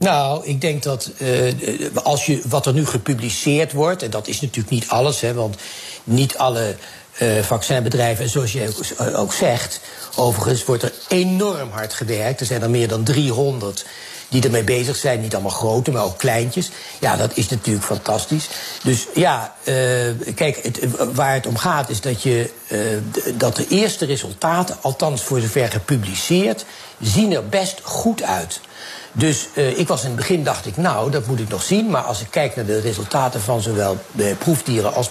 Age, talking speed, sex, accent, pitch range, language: 60-79, 185 wpm, male, Dutch, 115-155 Hz, Dutch